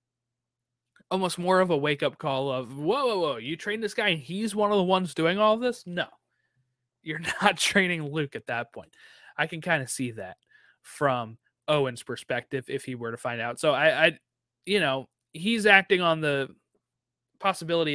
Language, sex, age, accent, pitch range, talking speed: English, male, 20-39, American, 125-185 Hz, 190 wpm